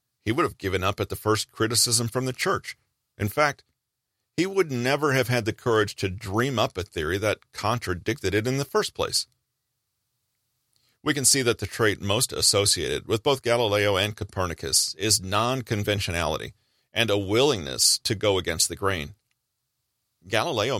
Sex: male